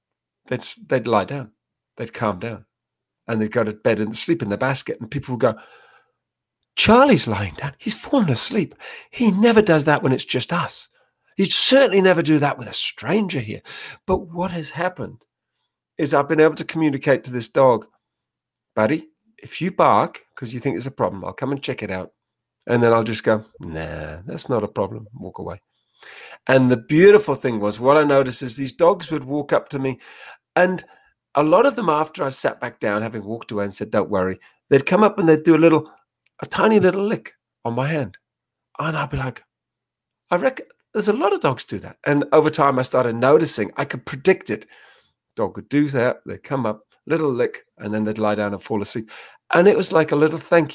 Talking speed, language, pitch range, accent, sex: 215 wpm, English, 115-165 Hz, British, male